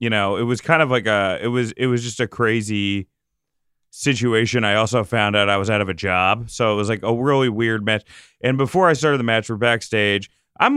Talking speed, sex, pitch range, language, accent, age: 240 wpm, male, 100-125 Hz, English, American, 30-49